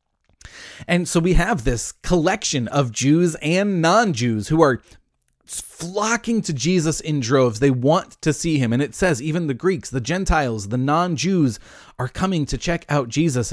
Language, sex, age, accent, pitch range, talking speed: English, male, 30-49, American, 120-170 Hz, 180 wpm